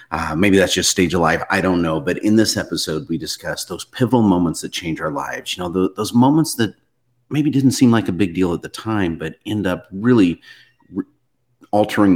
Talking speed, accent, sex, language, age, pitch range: 210 wpm, American, male, English, 40-59, 85-125 Hz